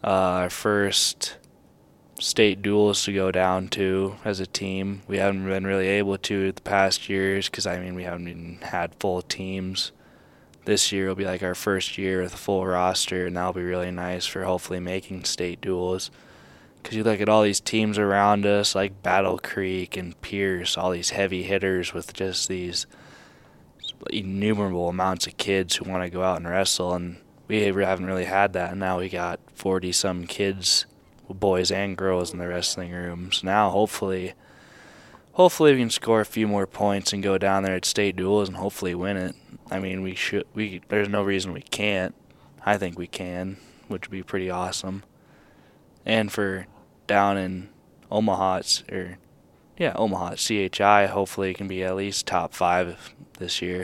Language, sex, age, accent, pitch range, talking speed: English, male, 10-29, American, 90-100 Hz, 185 wpm